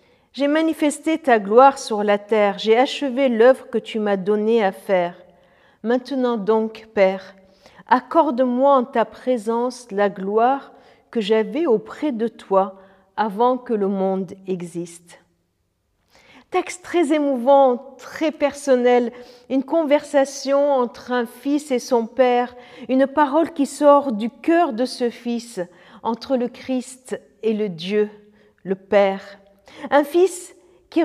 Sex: female